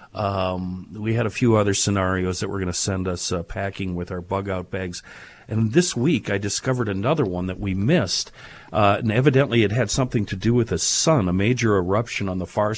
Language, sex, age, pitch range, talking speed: English, male, 50-69, 95-130 Hz, 215 wpm